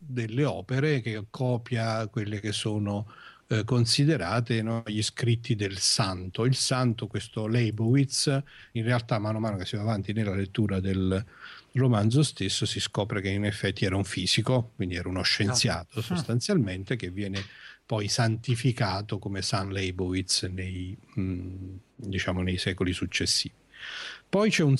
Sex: male